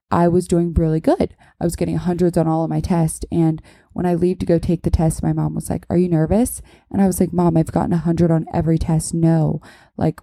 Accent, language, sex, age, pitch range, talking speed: American, English, female, 20-39, 160-185 Hz, 260 wpm